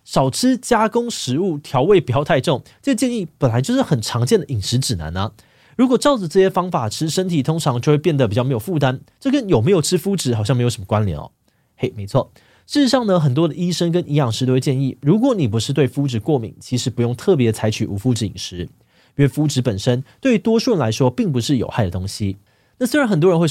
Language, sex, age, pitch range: Chinese, male, 20-39, 115-165 Hz